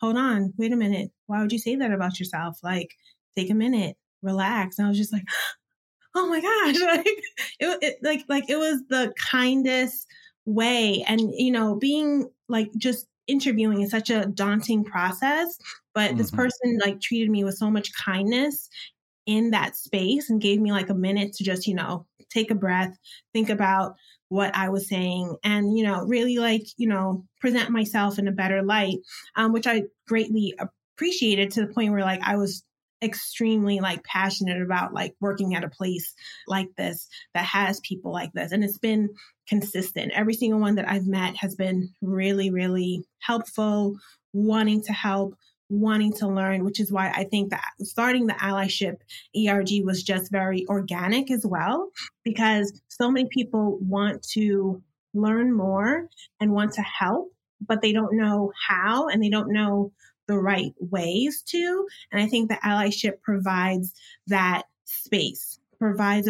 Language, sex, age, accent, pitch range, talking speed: English, female, 20-39, American, 195-230 Hz, 175 wpm